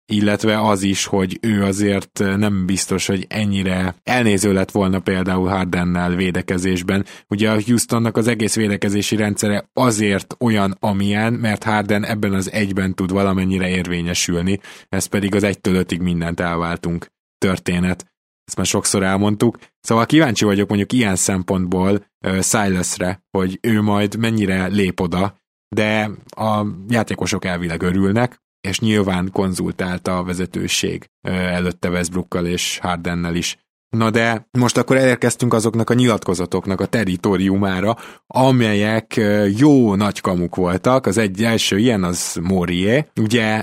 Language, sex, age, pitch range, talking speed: Hungarian, male, 20-39, 95-110 Hz, 130 wpm